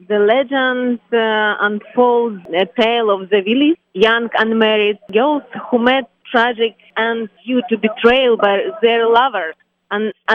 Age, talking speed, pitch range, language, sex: 30-49, 140 wpm, 205-245 Hz, English, female